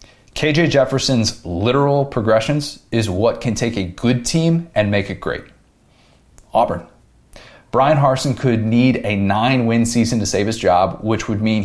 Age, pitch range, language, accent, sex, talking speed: 30-49, 105-130 Hz, English, American, male, 155 wpm